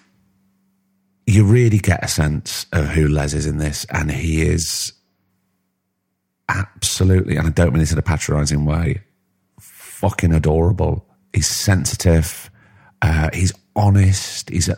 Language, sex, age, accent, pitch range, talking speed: English, male, 40-59, British, 80-95 Hz, 125 wpm